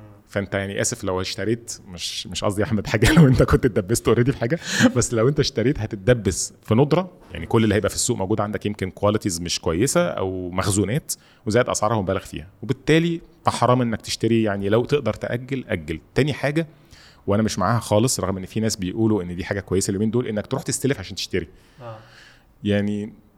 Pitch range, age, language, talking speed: 100-125 Hz, 30-49, Arabic, 195 wpm